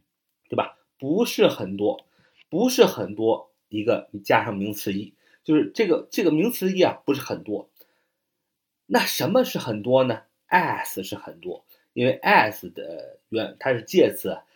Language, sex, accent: Chinese, male, native